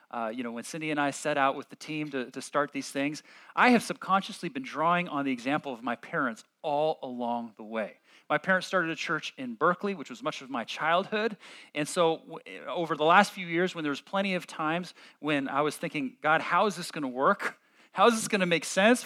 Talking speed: 240 wpm